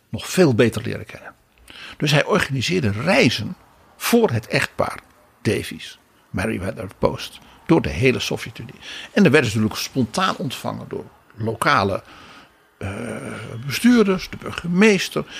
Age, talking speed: 60-79, 125 wpm